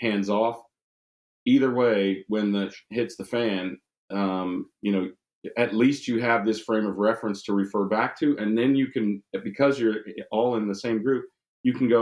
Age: 40-59